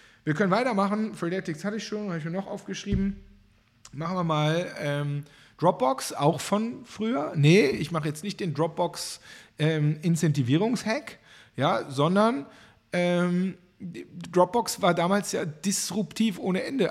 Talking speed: 140 wpm